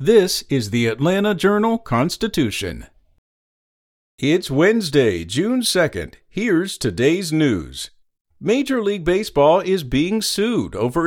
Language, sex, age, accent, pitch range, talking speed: English, male, 50-69, American, 135-180 Hz, 105 wpm